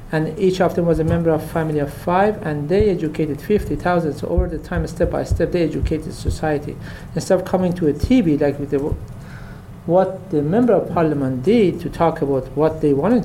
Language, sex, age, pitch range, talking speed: English, male, 50-69, 150-205 Hz, 205 wpm